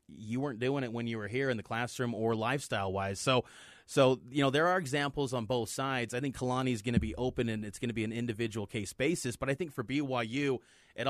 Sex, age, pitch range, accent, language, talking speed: male, 30-49, 115-140 Hz, American, English, 250 wpm